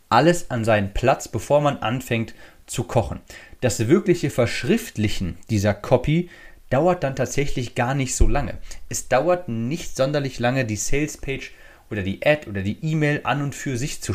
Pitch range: 105-145 Hz